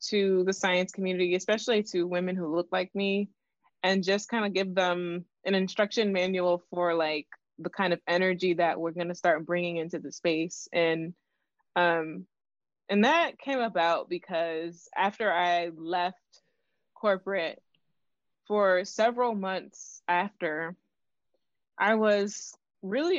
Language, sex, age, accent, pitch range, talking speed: English, female, 20-39, American, 175-200 Hz, 135 wpm